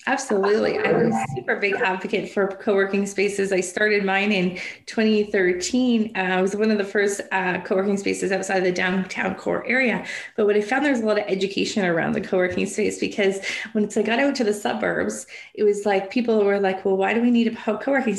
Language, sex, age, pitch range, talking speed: English, female, 20-39, 195-225 Hz, 220 wpm